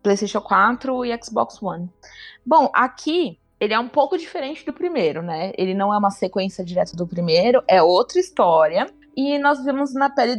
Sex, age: female, 20-39